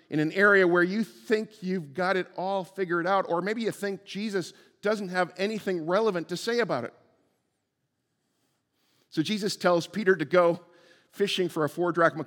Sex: male